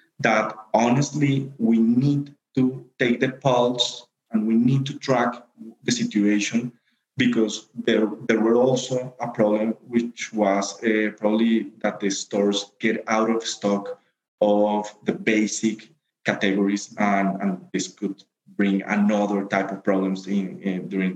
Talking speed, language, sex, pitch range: 140 wpm, English, male, 105-120 Hz